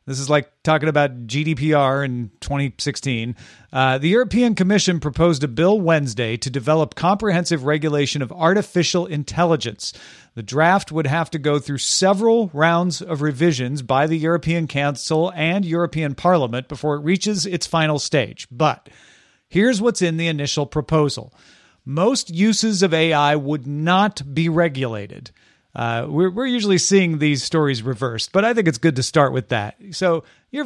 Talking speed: 160 wpm